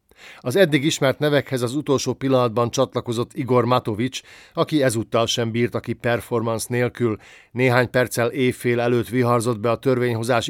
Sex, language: male, Hungarian